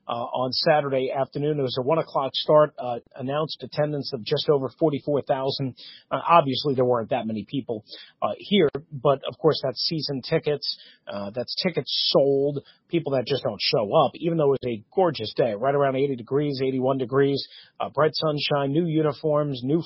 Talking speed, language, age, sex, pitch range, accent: 185 wpm, English, 40-59, male, 135-160 Hz, American